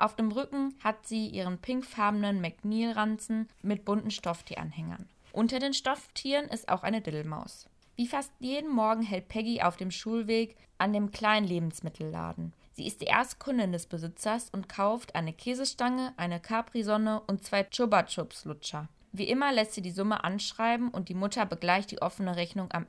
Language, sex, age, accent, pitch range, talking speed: German, female, 20-39, German, 175-225 Hz, 160 wpm